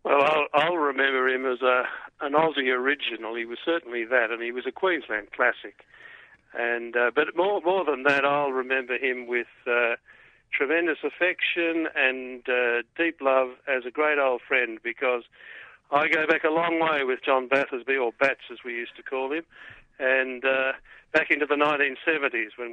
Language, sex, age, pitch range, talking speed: English, male, 60-79, 125-150 Hz, 180 wpm